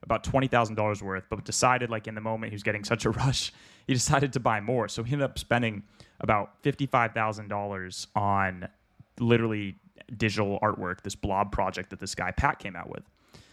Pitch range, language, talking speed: 100-125 Hz, English, 180 wpm